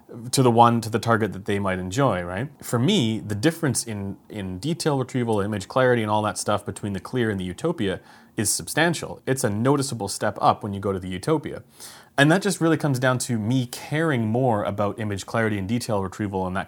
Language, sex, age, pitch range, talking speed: English, male, 30-49, 100-130 Hz, 225 wpm